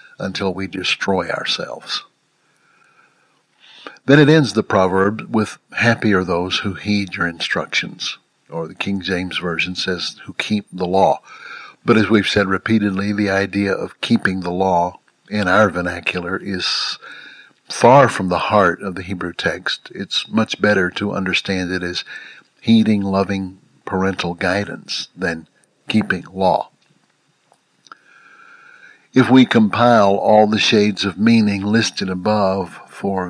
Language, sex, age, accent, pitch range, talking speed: English, male, 60-79, American, 95-110 Hz, 135 wpm